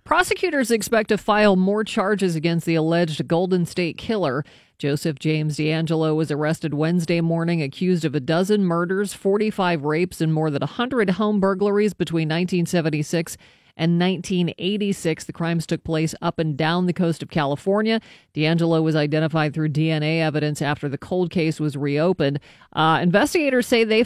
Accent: American